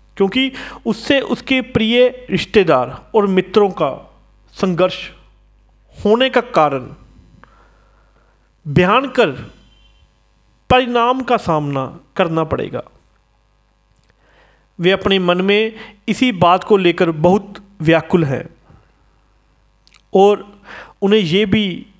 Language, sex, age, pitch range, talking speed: Hindi, male, 40-59, 155-225 Hz, 95 wpm